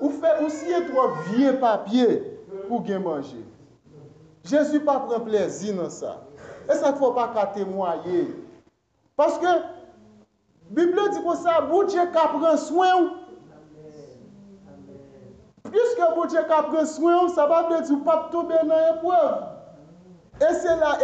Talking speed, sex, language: 140 wpm, male, English